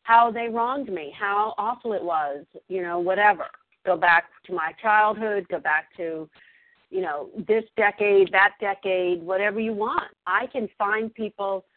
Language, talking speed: English, 165 wpm